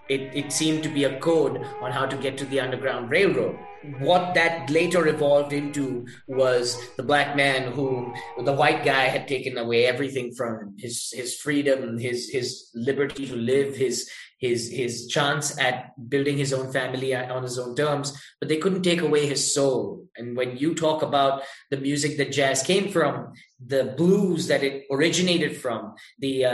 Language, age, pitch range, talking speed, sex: English, 20-39, 130-160 Hz, 180 wpm, male